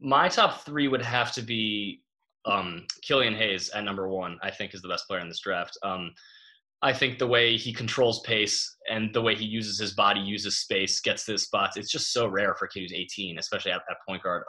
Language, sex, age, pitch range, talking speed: English, male, 20-39, 100-125 Hz, 235 wpm